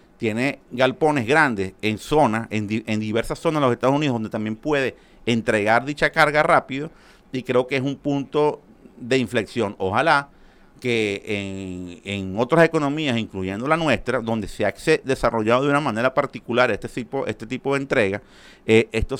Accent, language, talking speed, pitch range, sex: Venezuelan, Spanish, 170 wpm, 115-145 Hz, male